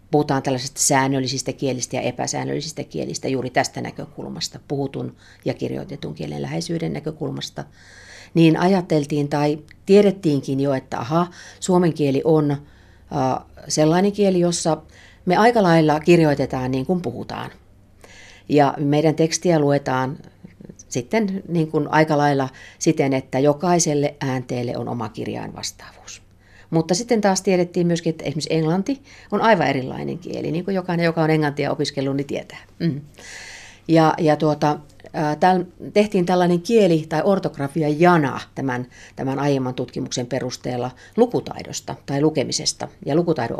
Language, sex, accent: Finnish, female, native